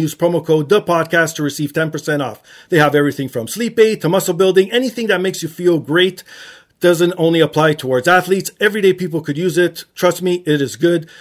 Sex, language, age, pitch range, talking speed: male, English, 40-59, 150-200 Hz, 210 wpm